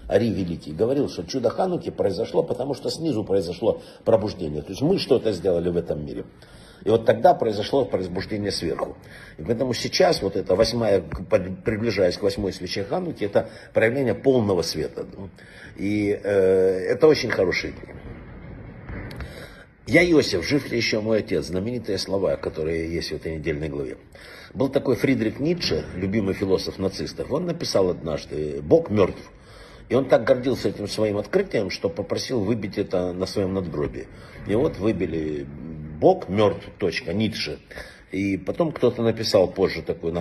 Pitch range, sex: 95-145 Hz, male